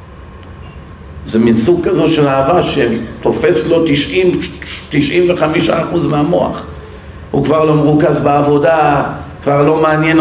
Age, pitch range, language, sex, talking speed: 50-69, 110-165 Hz, Hebrew, male, 100 wpm